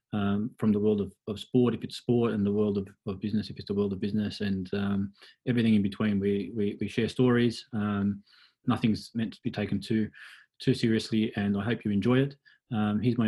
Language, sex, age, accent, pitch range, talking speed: English, male, 20-39, Australian, 100-110 Hz, 225 wpm